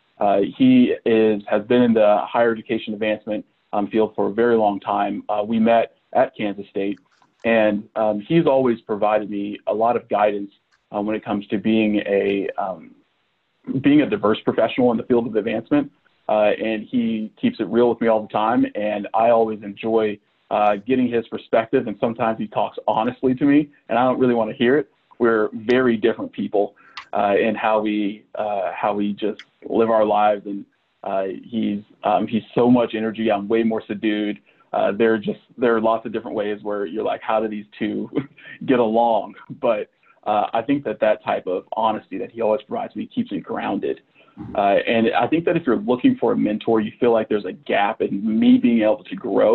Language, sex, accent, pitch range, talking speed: English, male, American, 105-120 Hz, 205 wpm